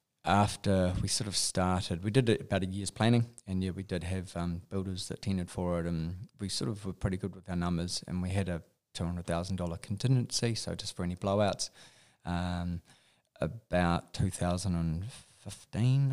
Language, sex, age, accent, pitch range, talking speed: English, male, 20-39, Australian, 90-100 Hz, 170 wpm